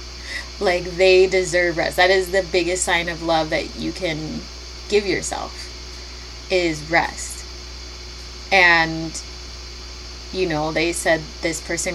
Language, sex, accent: English, female, American